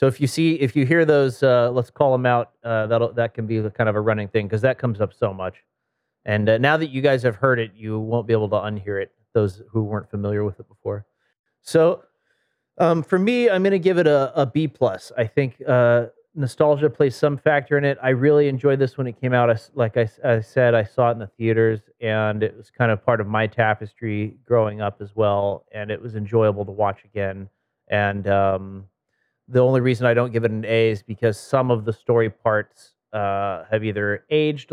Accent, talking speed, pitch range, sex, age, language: American, 235 wpm, 105-130 Hz, male, 30-49, English